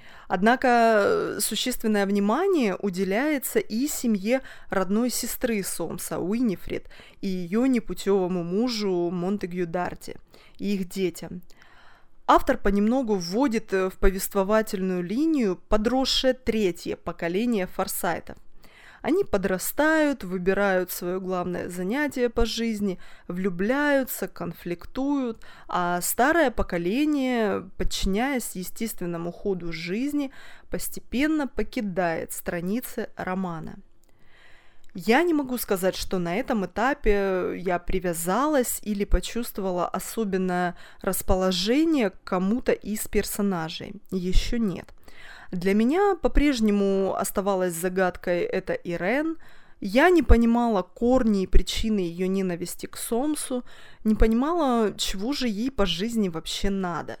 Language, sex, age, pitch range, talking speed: Russian, female, 20-39, 185-245 Hz, 100 wpm